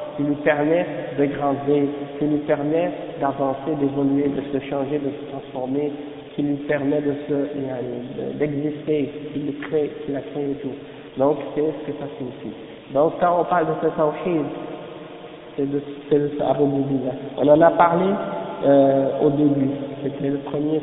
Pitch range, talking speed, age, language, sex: 140-165 Hz, 160 wpm, 50-69, French, male